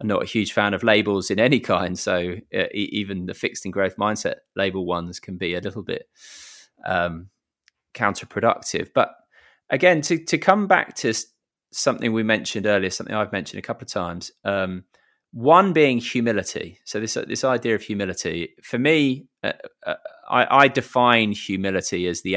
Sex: male